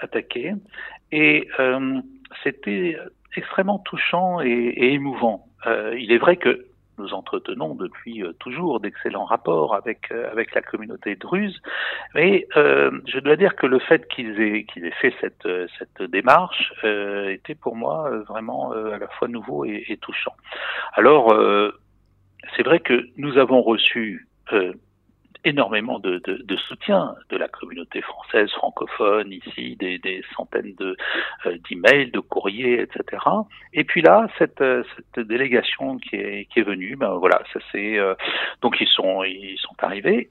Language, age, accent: French, 60-79, French